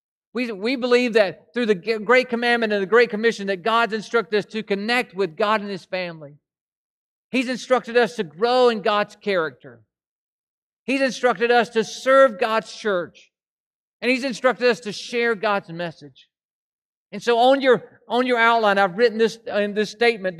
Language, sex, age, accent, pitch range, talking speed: English, male, 50-69, American, 170-225 Hz, 175 wpm